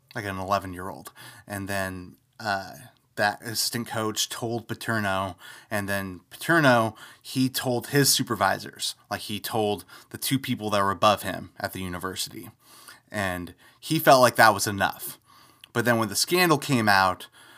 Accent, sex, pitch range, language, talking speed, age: American, male, 110-145 Hz, English, 155 wpm, 30-49